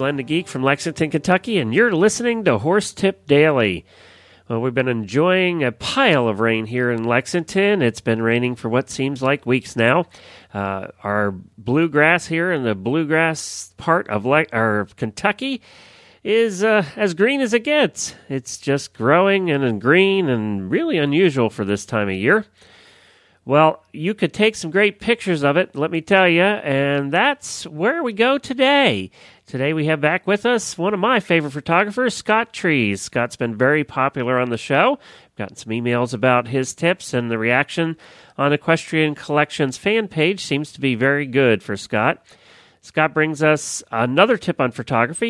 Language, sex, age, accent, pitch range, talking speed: English, male, 40-59, American, 120-190 Hz, 175 wpm